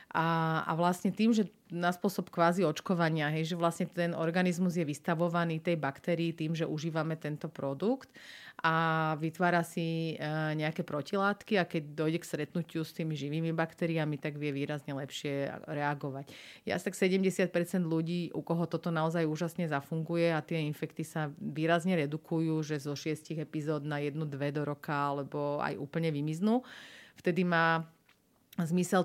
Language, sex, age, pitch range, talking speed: Slovak, female, 30-49, 150-170 Hz, 150 wpm